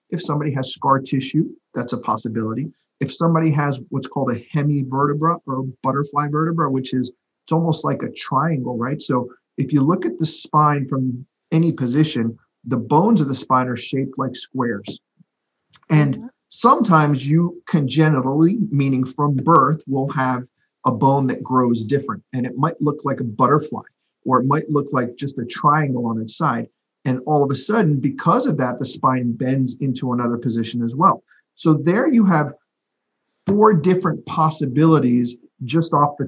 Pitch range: 125-150 Hz